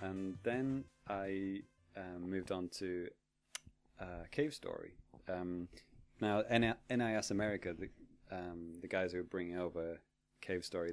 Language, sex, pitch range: English, male, 90-110 Hz